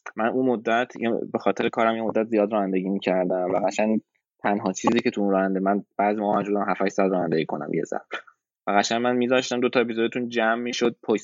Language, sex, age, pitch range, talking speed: Persian, male, 20-39, 95-115 Hz, 220 wpm